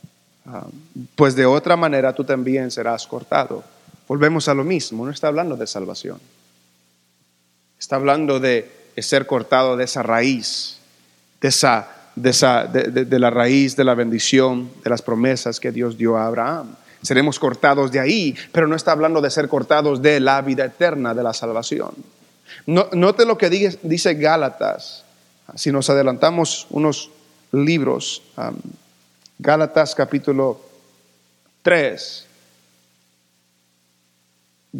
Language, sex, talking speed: English, male, 135 wpm